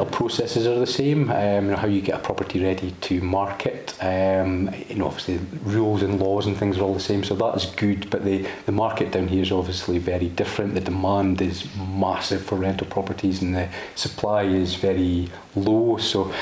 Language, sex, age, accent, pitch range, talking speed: English, male, 30-49, British, 95-100 Hz, 200 wpm